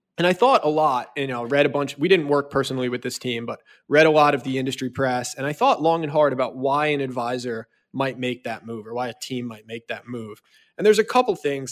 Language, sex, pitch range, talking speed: English, male, 125-150 Hz, 265 wpm